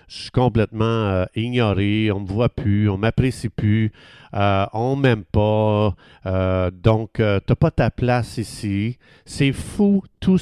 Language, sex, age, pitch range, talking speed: French, male, 50-69, 105-140 Hz, 180 wpm